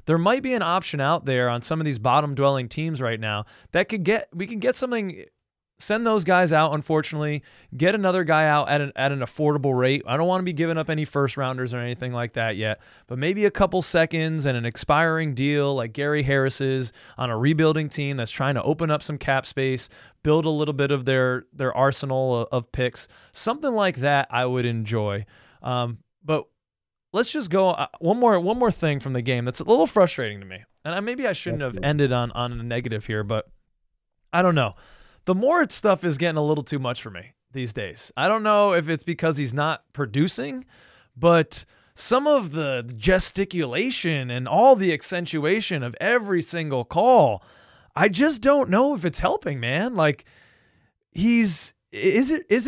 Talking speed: 200 wpm